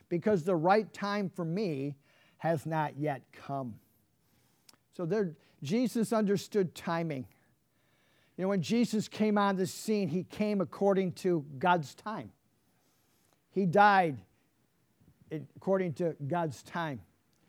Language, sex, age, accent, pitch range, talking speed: English, male, 50-69, American, 150-205 Hz, 115 wpm